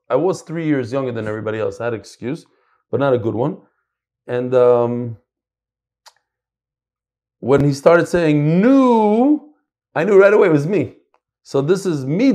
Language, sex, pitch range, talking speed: English, male, 135-205 Hz, 170 wpm